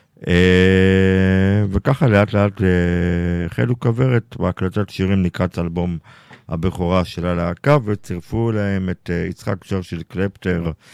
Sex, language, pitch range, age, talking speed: male, Hebrew, 85-105 Hz, 50-69, 115 wpm